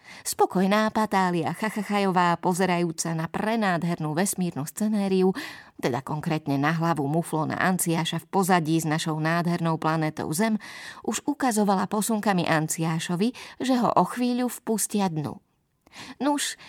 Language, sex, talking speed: Slovak, female, 115 wpm